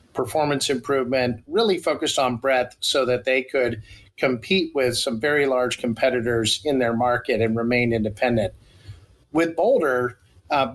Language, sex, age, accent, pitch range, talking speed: English, male, 50-69, American, 120-140 Hz, 140 wpm